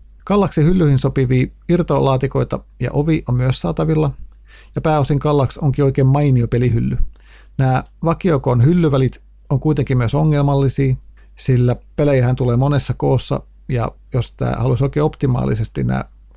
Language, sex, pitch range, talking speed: Finnish, male, 120-140 Hz, 130 wpm